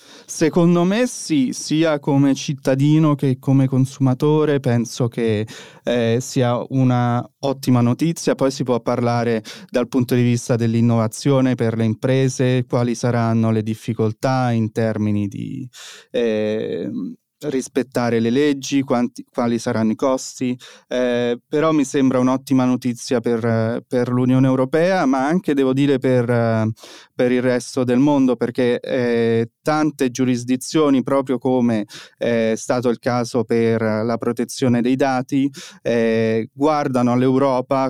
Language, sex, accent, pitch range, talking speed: Italian, male, native, 120-140 Hz, 130 wpm